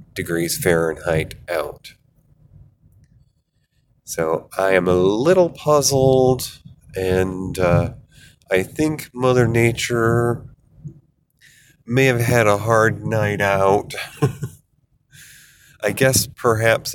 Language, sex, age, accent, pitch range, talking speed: English, male, 30-49, American, 100-130 Hz, 90 wpm